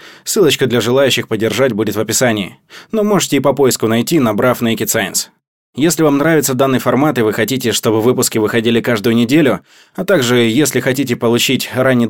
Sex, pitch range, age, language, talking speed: male, 110-140 Hz, 20-39, Russian, 175 wpm